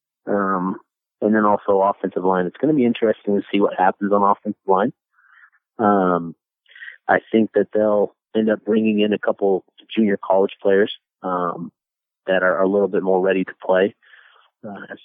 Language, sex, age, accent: English, male, 30-49, American